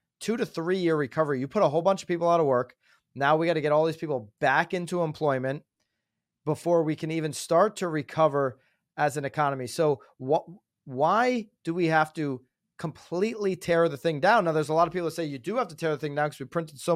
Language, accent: English, American